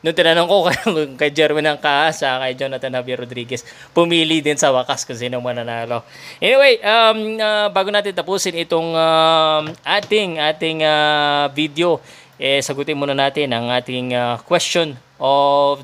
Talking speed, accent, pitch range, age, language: 145 wpm, native, 135-160 Hz, 20-39, Filipino